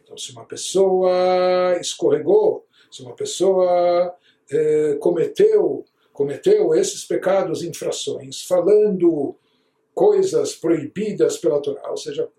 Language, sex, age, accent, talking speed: Portuguese, male, 60-79, Brazilian, 100 wpm